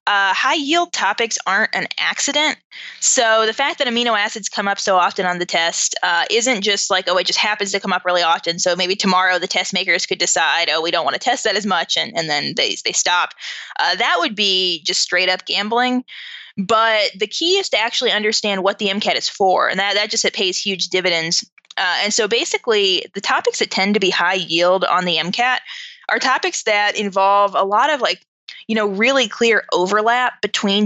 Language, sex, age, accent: English, female, 20-39, American